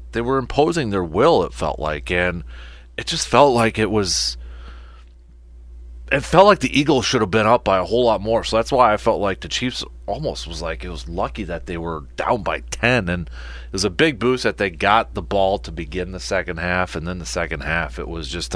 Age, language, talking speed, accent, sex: 30-49, English, 235 wpm, American, male